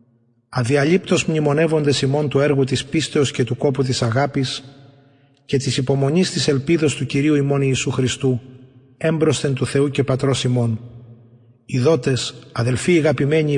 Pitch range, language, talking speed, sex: 130-155 Hz, Greek, 135 wpm, male